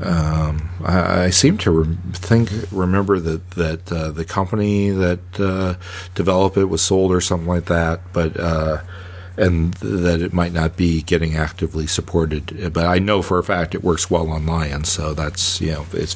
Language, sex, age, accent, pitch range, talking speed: English, male, 40-59, American, 85-95 Hz, 185 wpm